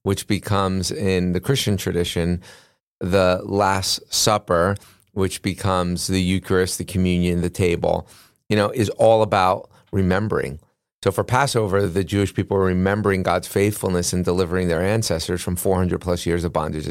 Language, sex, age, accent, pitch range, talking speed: English, male, 30-49, American, 90-100 Hz, 155 wpm